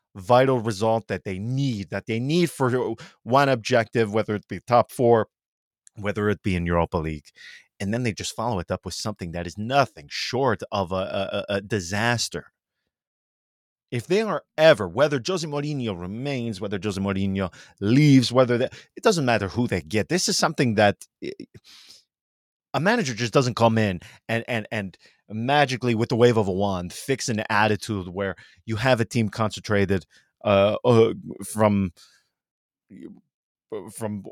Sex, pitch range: male, 100-125 Hz